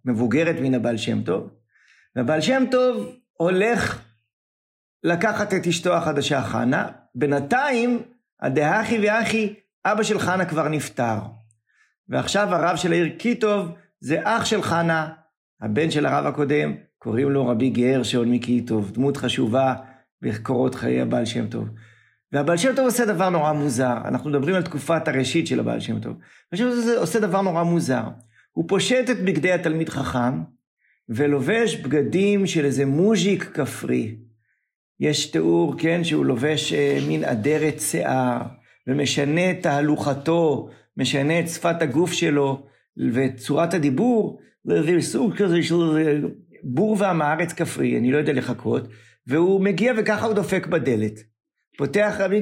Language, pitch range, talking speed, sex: Hebrew, 125-195 Hz, 135 wpm, male